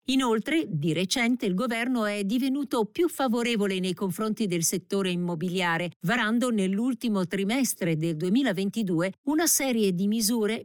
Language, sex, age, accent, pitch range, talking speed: Italian, female, 50-69, native, 190-250 Hz, 130 wpm